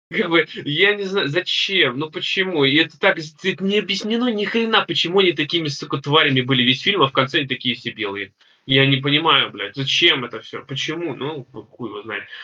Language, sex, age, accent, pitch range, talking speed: Russian, male, 20-39, native, 130-170 Hz, 205 wpm